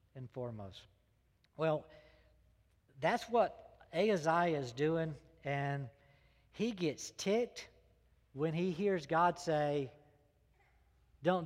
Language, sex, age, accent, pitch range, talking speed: English, male, 50-69, American, 140-195 Hz, 95 wpm